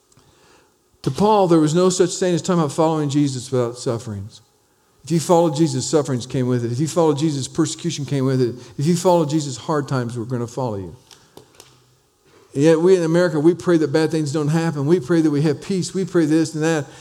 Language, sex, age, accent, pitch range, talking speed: English, male, 50-69, American, 140-190 Hz, 225 wpm